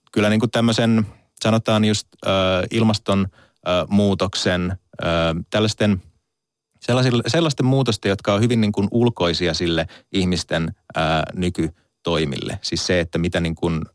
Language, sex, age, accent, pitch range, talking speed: Finnish, male, 30-49, native, 85-100 Hz, 115 wpm